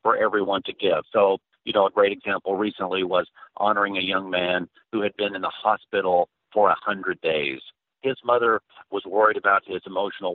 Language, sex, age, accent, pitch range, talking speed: English, male, 50-69, American, 95-130 Hz, 190 wpm